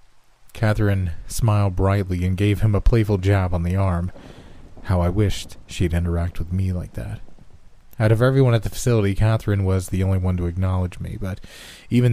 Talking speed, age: 185 wpm, 30-49